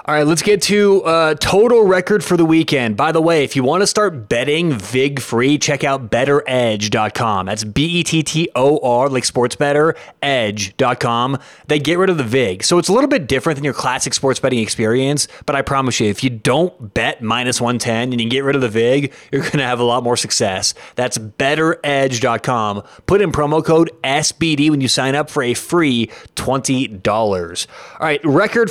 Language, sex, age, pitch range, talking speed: English, male, 30-49, 130-170 Hz, 190 wpm